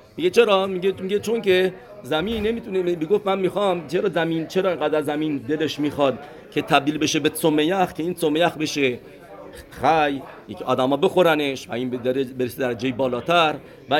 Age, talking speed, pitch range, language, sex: 50-69, 165 wpm, 130-165 Hz, English, male